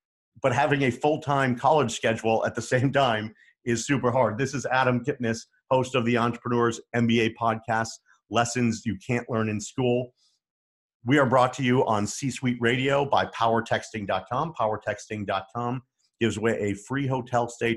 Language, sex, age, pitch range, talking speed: English, male, 50-69, 110-135 Hz, 155 wpm